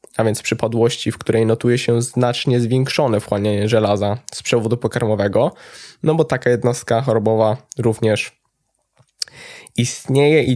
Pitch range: 110-130 Hz